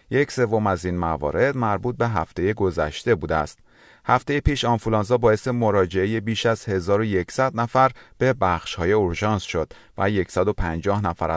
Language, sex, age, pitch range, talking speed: Persian, male, 30-49, 90-125 Hz, 145 wpm